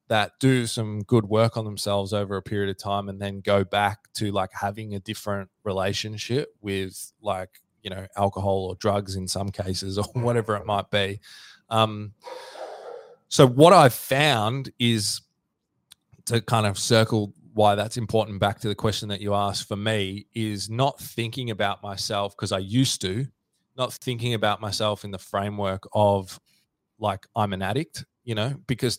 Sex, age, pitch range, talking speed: male, 20-39, 95-110 Hz, 170 wpm